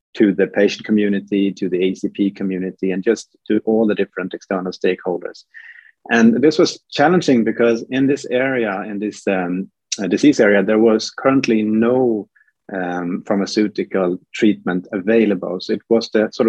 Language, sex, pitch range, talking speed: English, male, 95-115 Hz, 155 wpm